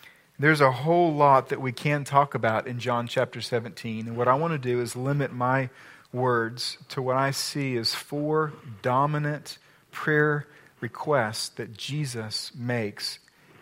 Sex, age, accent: male, 40-59, American